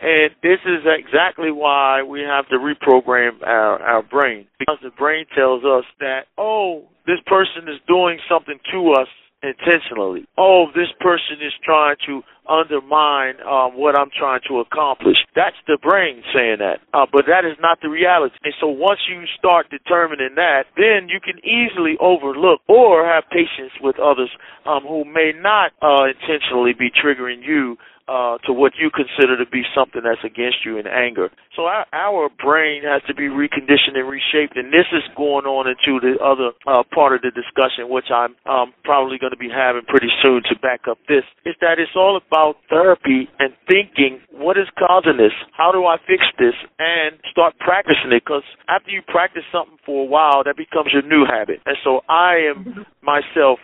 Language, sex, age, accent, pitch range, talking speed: English, male, 40-59, American, 130-165 Hz, 185 wpm